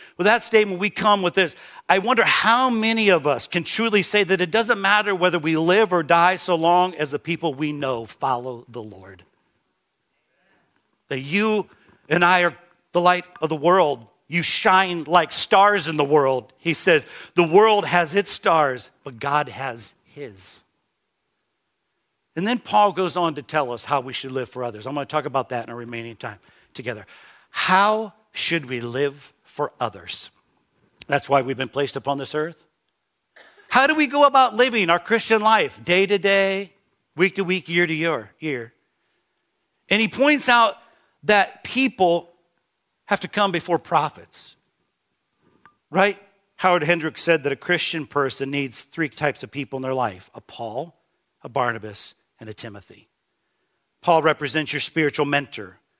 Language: English